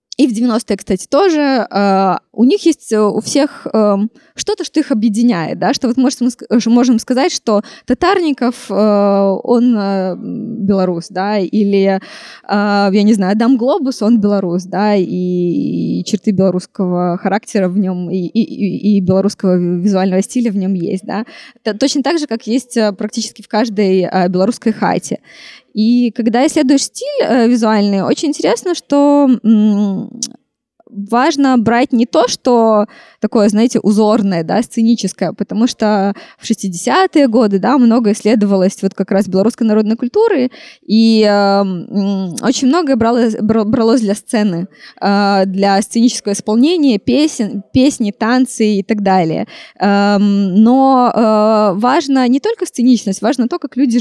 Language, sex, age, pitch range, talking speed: Russian, female, 20-39, 200-250 Hz, 130 wpm